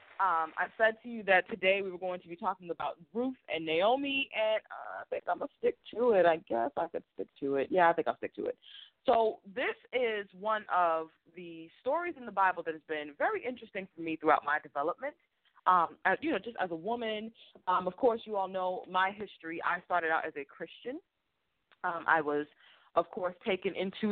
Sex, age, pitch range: female, 20-39, 165-240 Hz